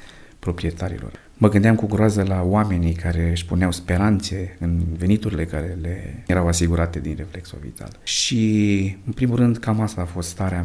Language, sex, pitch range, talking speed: Romanian, male, 85-100 Hz, 165 wpm